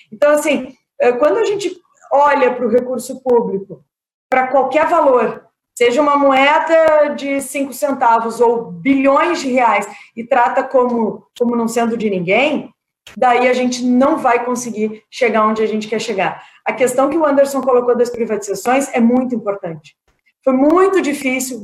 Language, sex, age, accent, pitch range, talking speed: Portuguese, female, 20-39, Brazilian, 230-275 Hz, 160 wpm